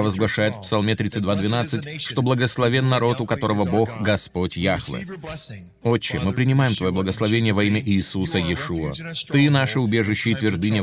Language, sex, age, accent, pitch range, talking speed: Russian, male, 30-49, native, 105-125 Hz, 150 wpm